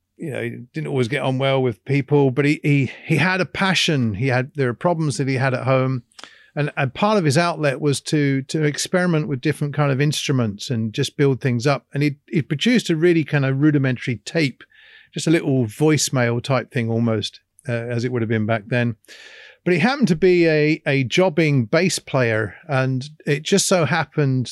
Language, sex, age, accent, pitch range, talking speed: English, male, 40-59, British, 130-170 Hz, 215 wpm